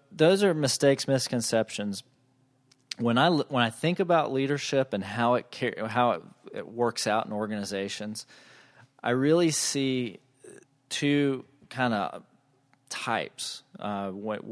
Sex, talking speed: male, 125 wpm